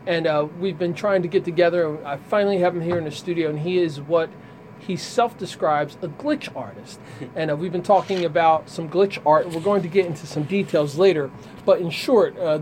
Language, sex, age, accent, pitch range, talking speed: English, male, 40-59, American, 150-180 Hz, 230 wpm